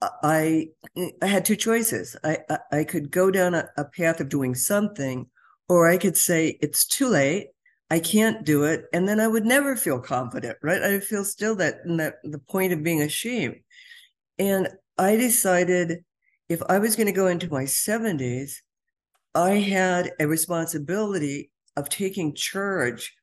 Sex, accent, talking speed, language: female, American, 170 wpm, English